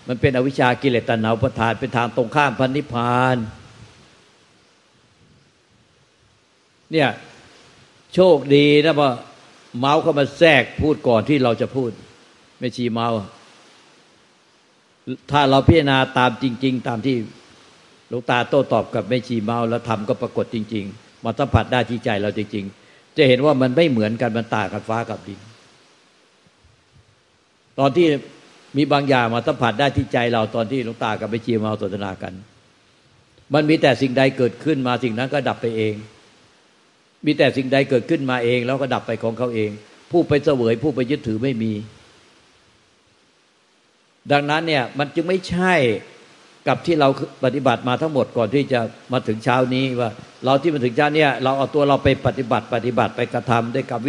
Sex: male